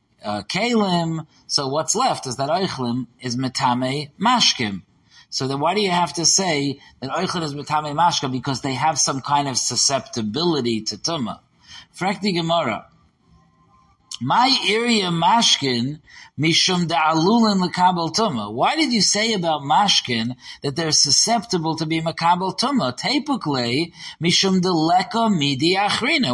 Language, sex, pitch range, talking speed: English, male, 130-205 Hz, 130 wpm